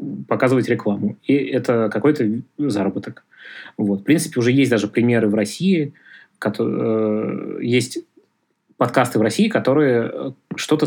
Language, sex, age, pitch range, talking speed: Russian, male, 20-39, 110-135 Hz, 120 wpm